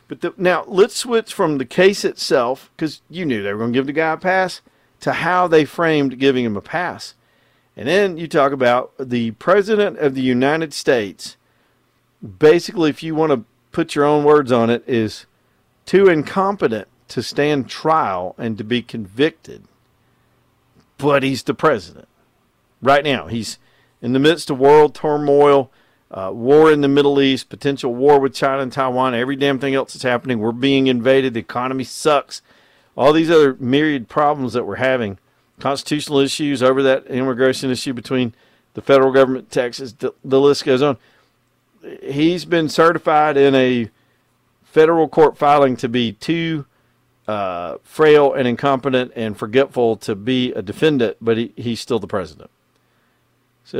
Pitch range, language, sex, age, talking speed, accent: 125-150 Hz, English, male, 50-69, 165 wpm, American